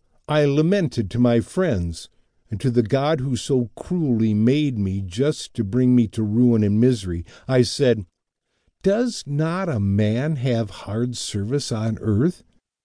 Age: 50-69